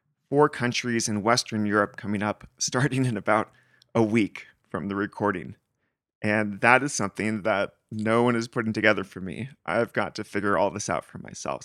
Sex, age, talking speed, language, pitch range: male, 30-49, 185 wpm, English, 110-130 Hz